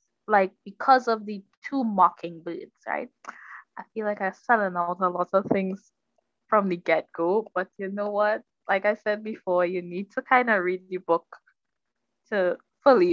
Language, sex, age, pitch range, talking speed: English, female, 10-29, 180-225 Hz, 175 wpm